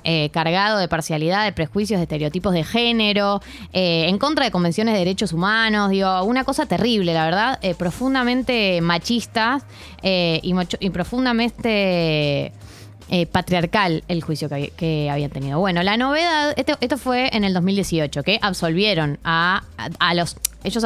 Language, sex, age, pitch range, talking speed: Spanish, female, 20-39, 175-245 Hz, 155 wpm